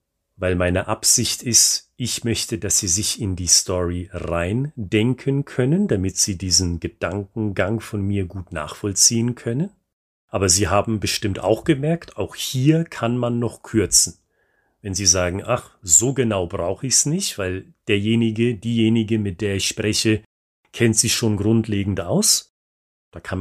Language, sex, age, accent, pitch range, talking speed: German, male, 40-59, German, 100-150 Hz, 150 wpm